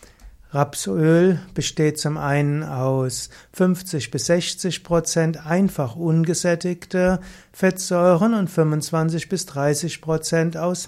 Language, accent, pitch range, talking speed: German, German, 145-180 Hz, 100 wpm